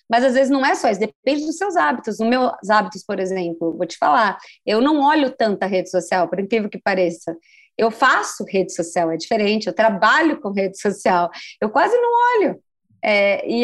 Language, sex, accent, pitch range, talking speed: Portuguese, female, Brazilian, 195-270 Hz, 200 wpm